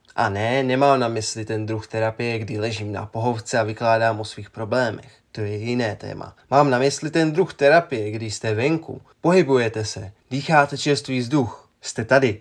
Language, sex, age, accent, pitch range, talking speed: Czech, male, 20-39, native, 110-135 Hz, 180 wpm